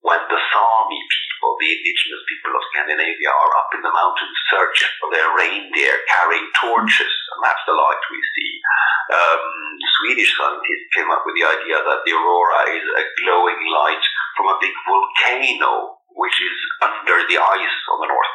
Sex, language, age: male, English, 50-69